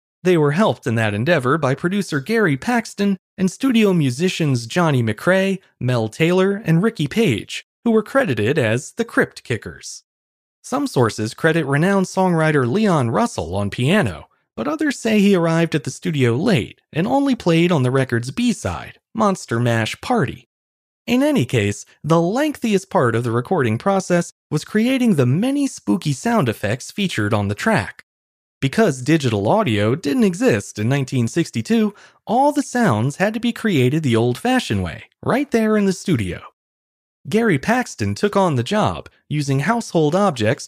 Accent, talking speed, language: American, 160 wpm, English